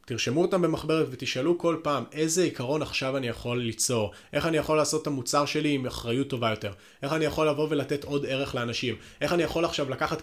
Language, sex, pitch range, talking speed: Hebrew, male, 115-145 Hz, 210 wpm